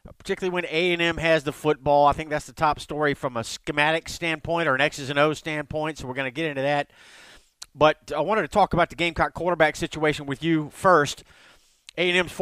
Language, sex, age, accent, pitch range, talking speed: English, male, 50-69, American, 150-175 Hz, 210 wpm